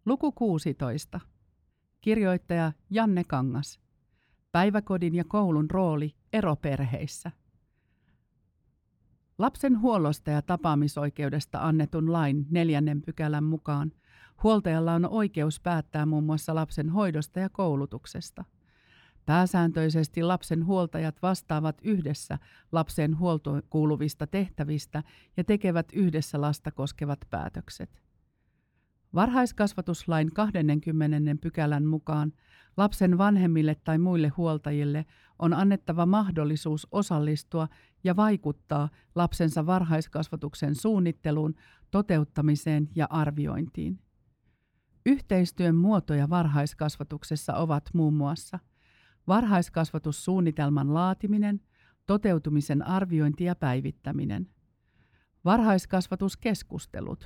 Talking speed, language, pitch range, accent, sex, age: 85 wpm, Finnish, 150-185 Hz, native, female, 50-69